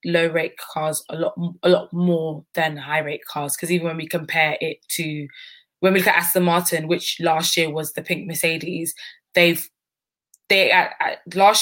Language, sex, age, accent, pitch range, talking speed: English, female, 20-39, British, 160-180 Hz, 190 wpm